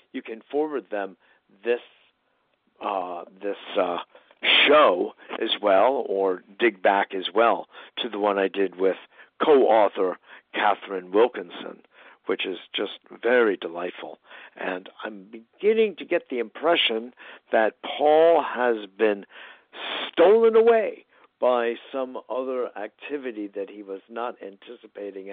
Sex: male